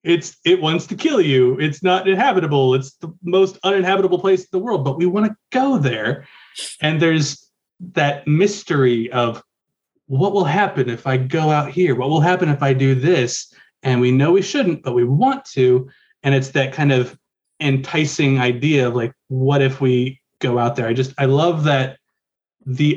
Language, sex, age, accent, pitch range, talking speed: English, male, 30-49, American, 125-155 Hz, 190 wpm